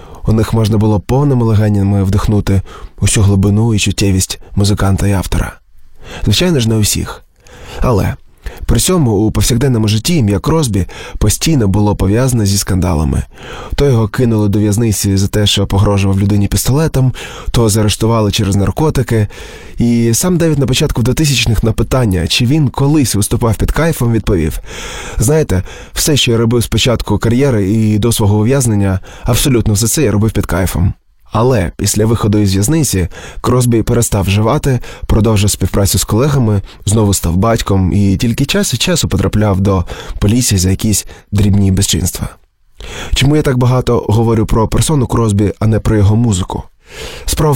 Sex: male